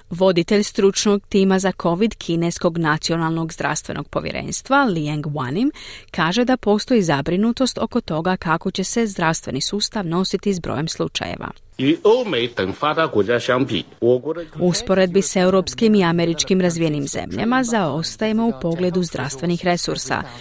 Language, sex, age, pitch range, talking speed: Croatian, female, 30-49, 160-200 Hz, 115 wpm